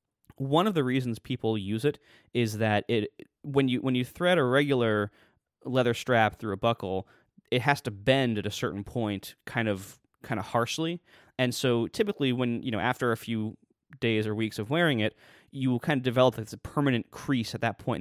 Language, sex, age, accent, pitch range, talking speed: English, male, 20-39, American, 105-125 Hz, 205 wpm